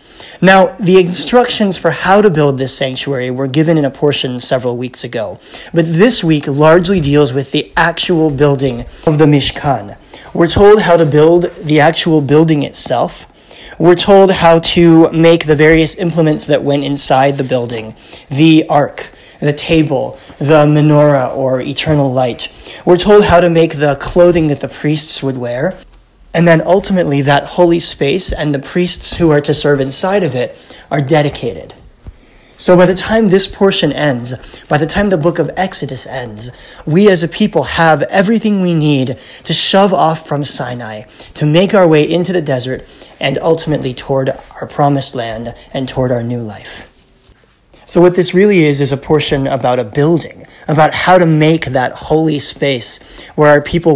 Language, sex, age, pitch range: English, male, 30-49, 135-170 Hz